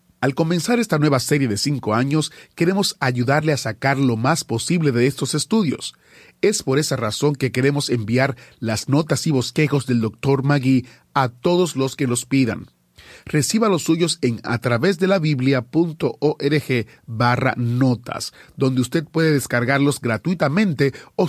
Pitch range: 115-150 Hz